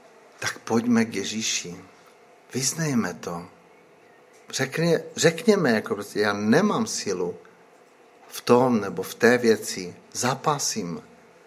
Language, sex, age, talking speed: Czech, male, 60-79, 100 wpm